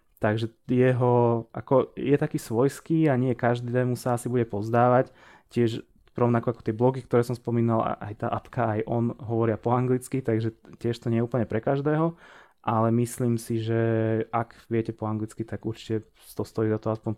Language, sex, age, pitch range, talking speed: Slovak, male, 20-39, 110-130 Hz, 180 wpm